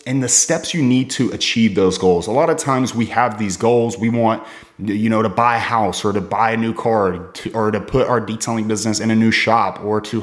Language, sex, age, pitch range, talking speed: English, male, 30-49, 110-140 Hz, 260 wpm